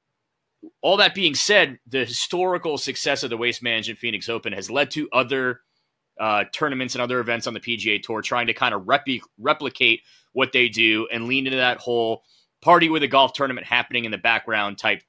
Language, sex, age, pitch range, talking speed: English, male, 30-49, 115-135 Hz, 195 wpm